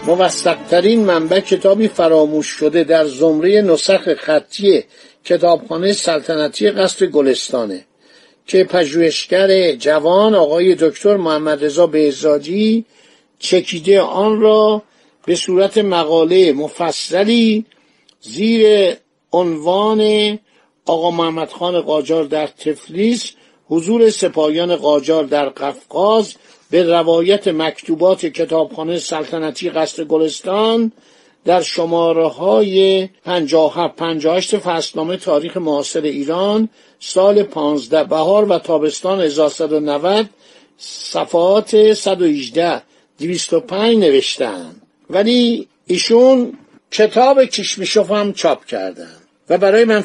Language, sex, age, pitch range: Persian, male, 60-79, 160-210 Hz